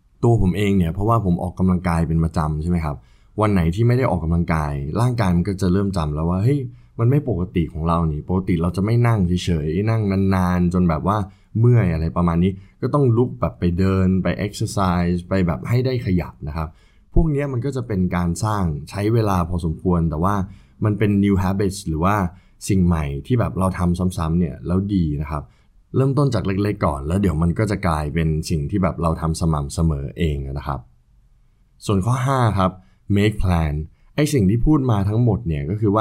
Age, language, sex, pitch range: 20-39, Thai, male, 85-105 Hz